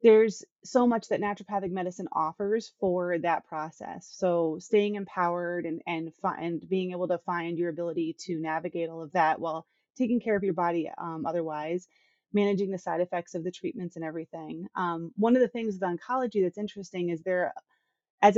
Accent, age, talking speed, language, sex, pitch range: American, 30-49, 185 wpm, English, female, 170-205 Hz